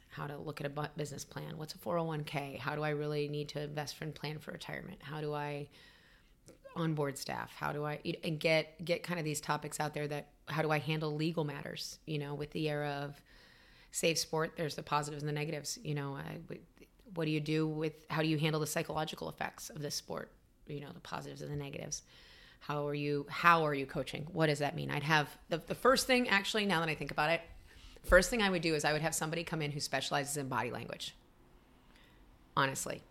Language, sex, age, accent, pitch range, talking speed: English, female, 30-49, American, 145-160 Hz, 235 wpm